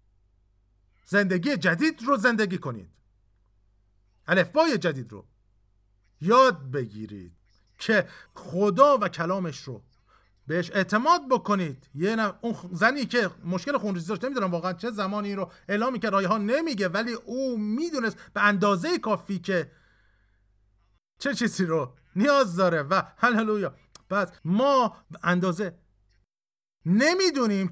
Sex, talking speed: male, 120 wpm